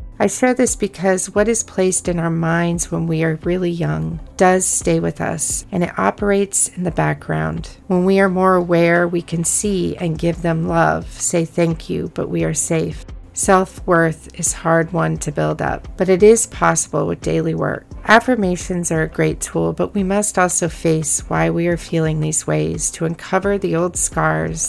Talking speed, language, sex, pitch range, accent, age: 190 wpm, English, female, 130-180 Hz, American, 40-59